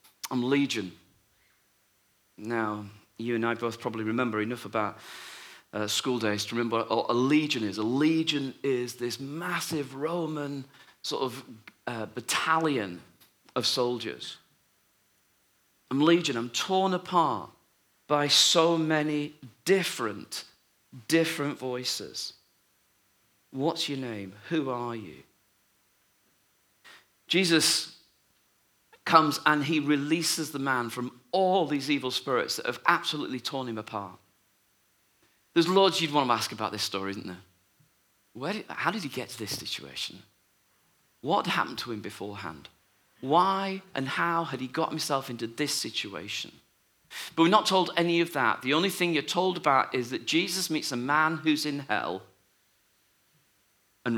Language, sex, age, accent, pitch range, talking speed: English, male, 40-59, British, 105-160 Hz, 140 wpm